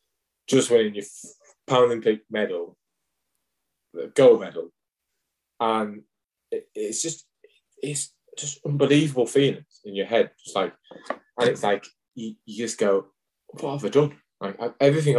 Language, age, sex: English, 20-39, male